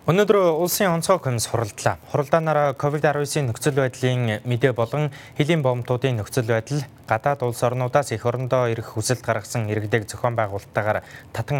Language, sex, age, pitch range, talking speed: English, male, 20-39, 115-140 Hz, 140 wpm